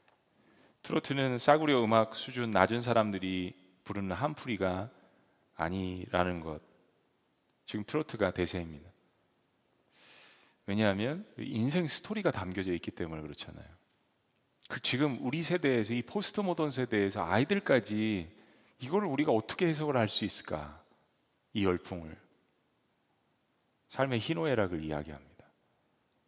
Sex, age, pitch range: male, 40-59, 95-150 Hz